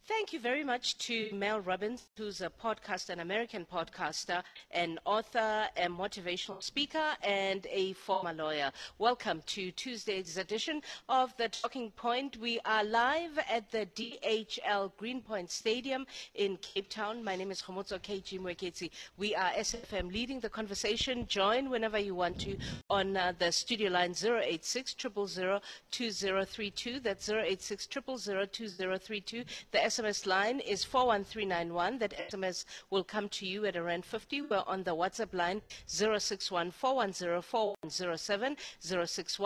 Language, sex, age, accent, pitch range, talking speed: English, female, 50-69, South African, 185-235 Hz, 130 wpm